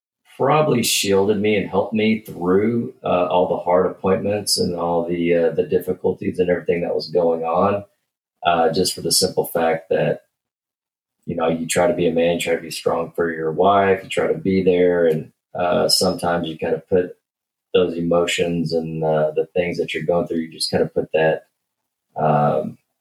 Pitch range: 80-95 Hz